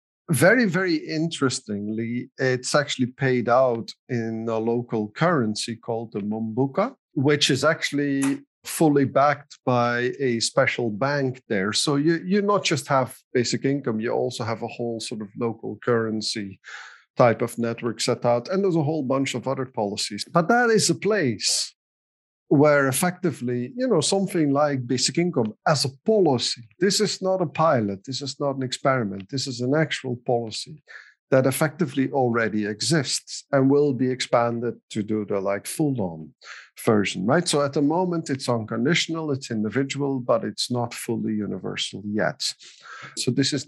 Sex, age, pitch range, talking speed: male, 50-69, 120-160 Hz, 160 wpm